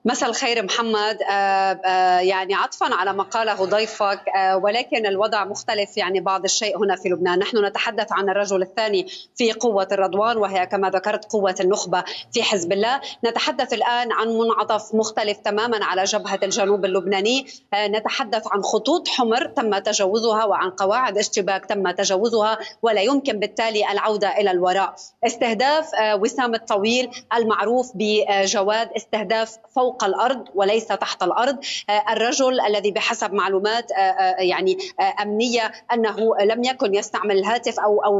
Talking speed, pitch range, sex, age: 130 wpm, 195-230 Hz, female, 30-49